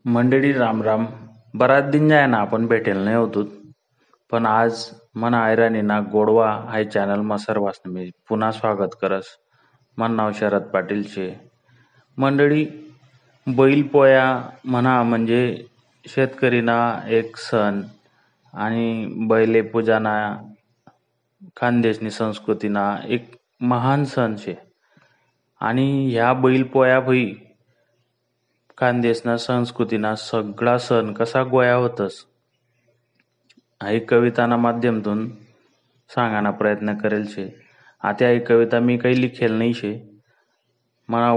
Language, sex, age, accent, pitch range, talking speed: Marathi, male, 30-49, native, 110-125 Hz, 95 wpm